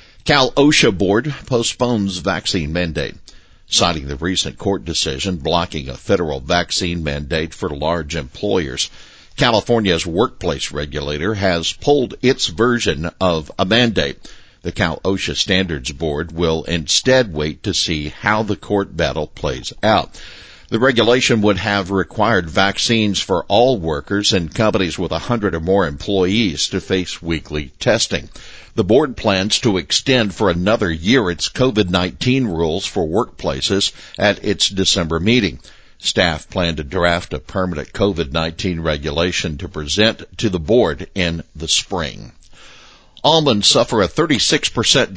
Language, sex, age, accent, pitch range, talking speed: English, male, 60-79, American, 80-105 Hz, 135 wpm